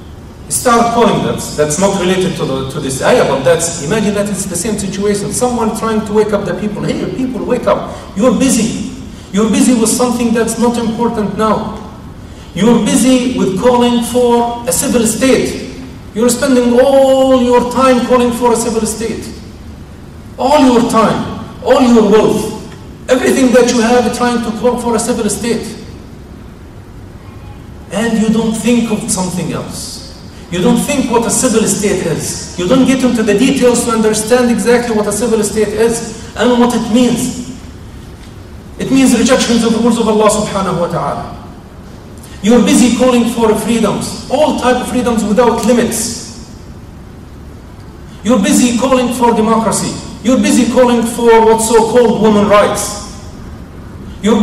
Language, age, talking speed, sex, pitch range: English, 50-69, 160 wpm, male, 215-245 Hz